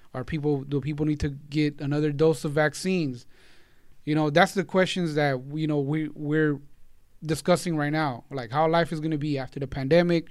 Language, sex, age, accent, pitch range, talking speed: English, male, 20-39, American, 140-165 Hz, 200 wpm